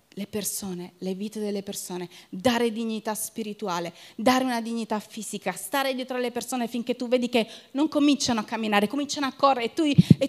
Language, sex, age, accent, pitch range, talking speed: Italian, female, 30-49, native, 230-345 Hz, 175 wpm